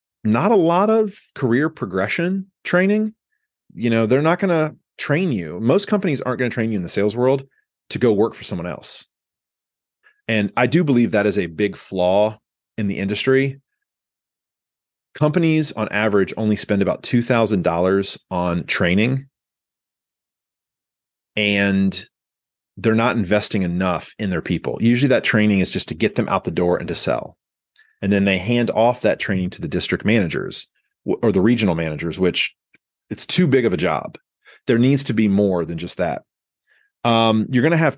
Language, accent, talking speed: English, American, 175 wpm